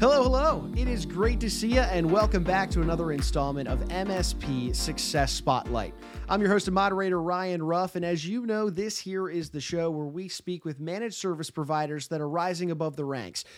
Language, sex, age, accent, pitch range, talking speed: English, male, 30-49, American, 145-195 Hz, 210 wpm